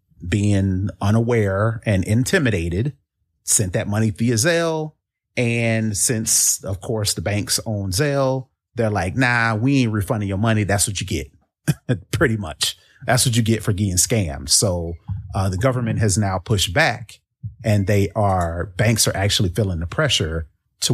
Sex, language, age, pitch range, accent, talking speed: male, English, 30-49, 95-115 Hz, American, 160 wpm